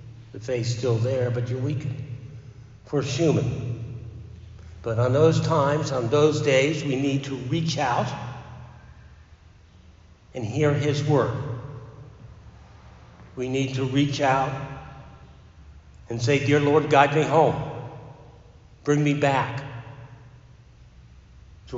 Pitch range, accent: 110-130 Hz, American